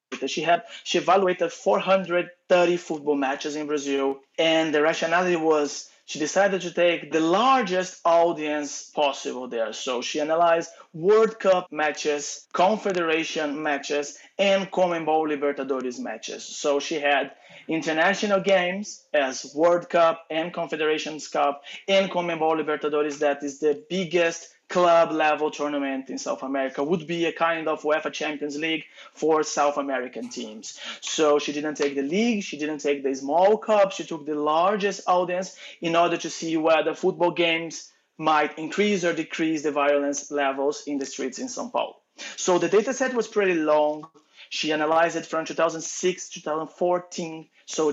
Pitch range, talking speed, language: 150-185 Hz, 155 wpm, English